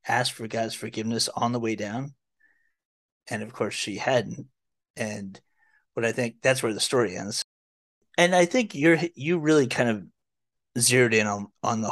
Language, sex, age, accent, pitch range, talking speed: English, male, 30-49, American, 115-140 Hz, 175 wpm